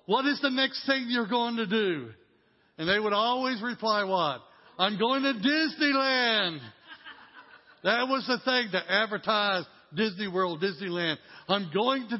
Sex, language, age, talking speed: male, English, 60-79, 150 wpm